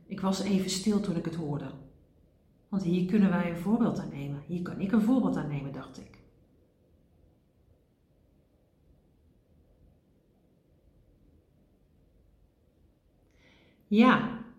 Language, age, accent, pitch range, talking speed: Dutch, 40-59, Dutch, 165-215 Hz, 105 wpm